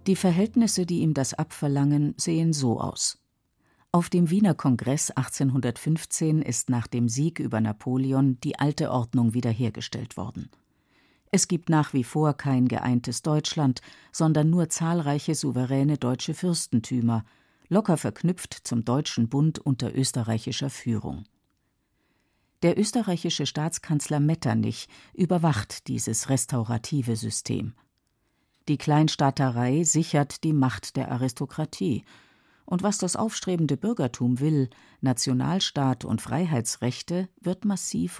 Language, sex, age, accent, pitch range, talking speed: German, female, 50-69, German, 125-165 Hz, 115 wpm